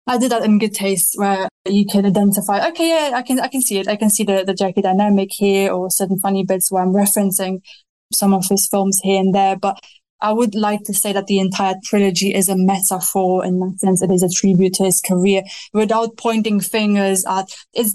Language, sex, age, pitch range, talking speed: English, female, 20-39, 195-220 Hz, 225 wpm